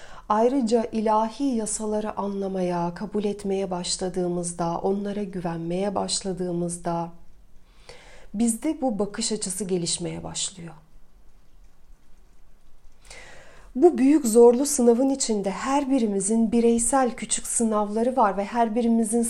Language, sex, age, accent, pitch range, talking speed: Turkish, female, 40-59, native, 205-255 Hz, 95 wpm